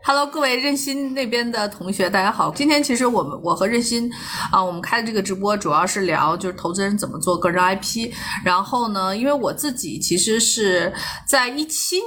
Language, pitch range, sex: Chinese, 180-235 Hz, female